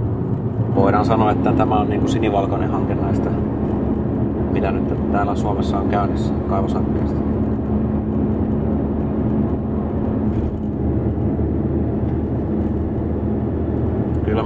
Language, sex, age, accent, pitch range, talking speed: Finnish, male, 30-49, native, 100-110 Hz, 65 wpm